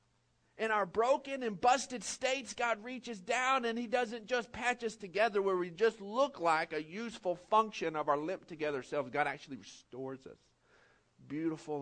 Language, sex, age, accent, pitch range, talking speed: English, male, 50-69, American, 185-245 Hz, 175 wpm